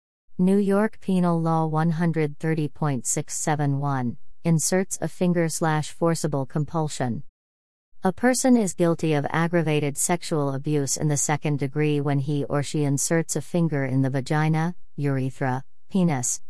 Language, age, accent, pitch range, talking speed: English, 40-59, American, 140-170 Hz, 125 wpm